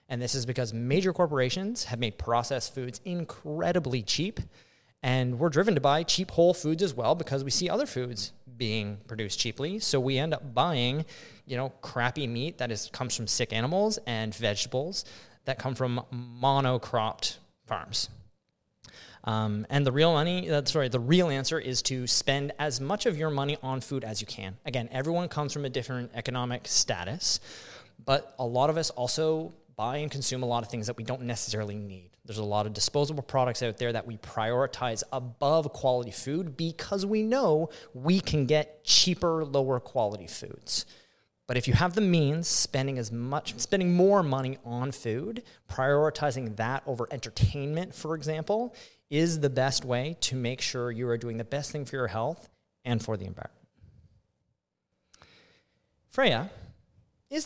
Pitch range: 120-155 Hz